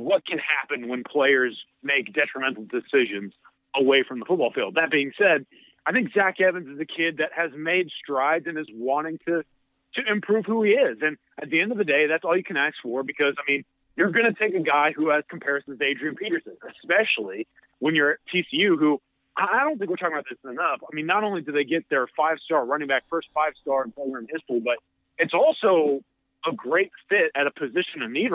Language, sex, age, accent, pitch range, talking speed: English, male, 30-49, American, 140-210 Hz, 225 wpm